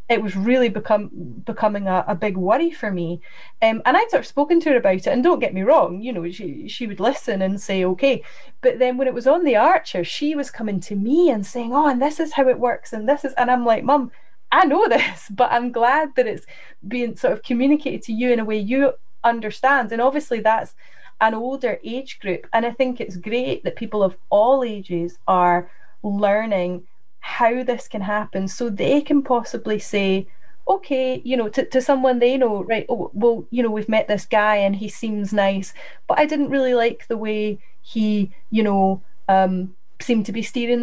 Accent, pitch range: British, 205-265 Hz